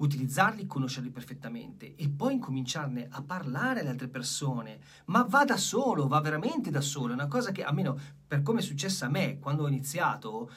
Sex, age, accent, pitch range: male, 40-59, native, 135-215 Hz